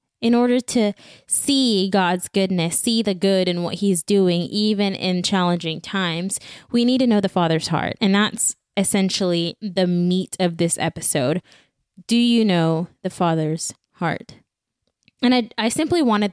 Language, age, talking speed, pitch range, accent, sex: English, 20-39, 160 wpm, 170-195 Hz, American, female